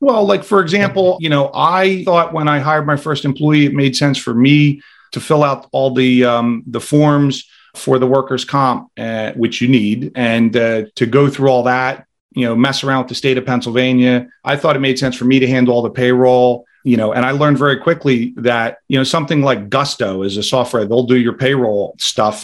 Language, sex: English, male